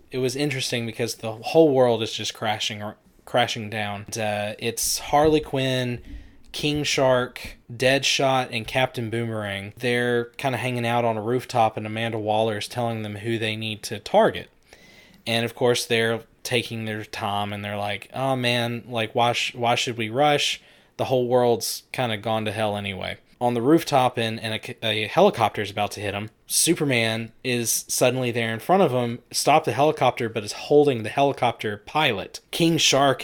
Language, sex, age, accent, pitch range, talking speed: English, male, 20-39, American, 110-130 Hz, 180 wpm